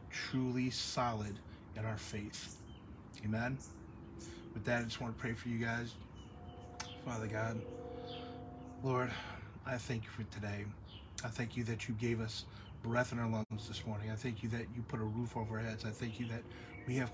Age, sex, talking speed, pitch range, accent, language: 30-49, male, 190 wpm, 100-120 Hz, American, English